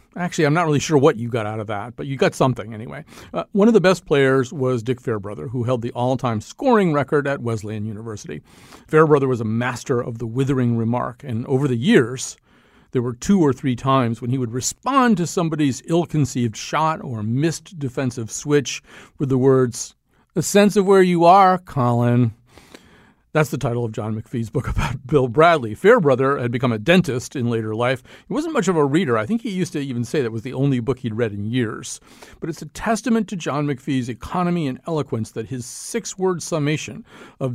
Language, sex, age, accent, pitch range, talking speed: English, male, 40-59, American, 120-160 Hz, 205 wpm